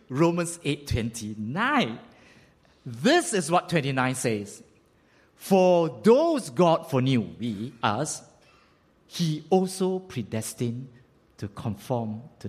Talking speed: 95 wpm